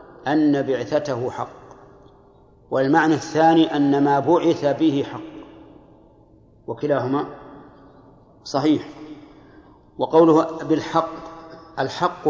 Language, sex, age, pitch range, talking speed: Arabic, male, 60-79, 135-155 Hz, 75 wpm